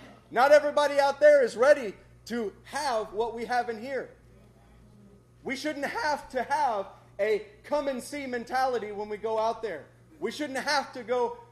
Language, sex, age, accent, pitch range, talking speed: English, male, 30-49, American, 210-265 Hz, 170 wpm